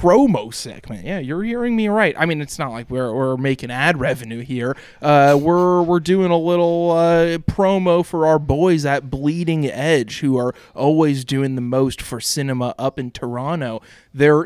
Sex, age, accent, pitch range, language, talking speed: male, 20-39, American, 125-160 Hz, English, 185 wpm